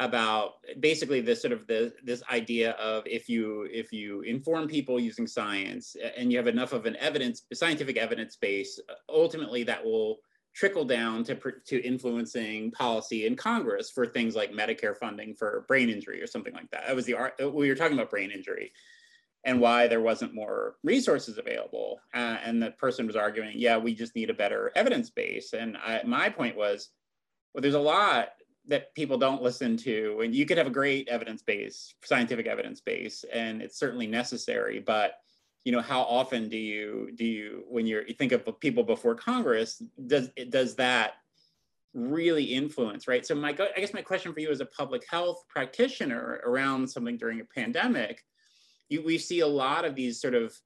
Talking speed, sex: 190 wpm, male